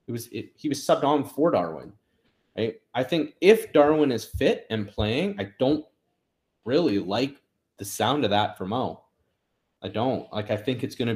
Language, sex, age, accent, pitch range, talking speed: English, male, 30-49, American, 100-145 Hz, 195 wpm